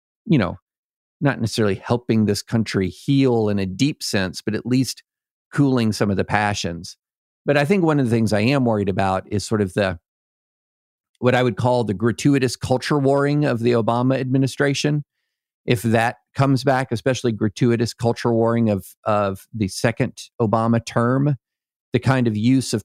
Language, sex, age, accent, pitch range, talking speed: English, male, 50-69, American, 105-130 Hz, 175 wpm